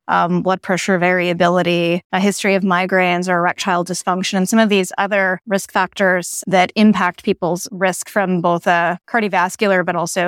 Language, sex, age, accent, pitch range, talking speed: English, female, 20-39, American, 180-215 Hz, 165 wpm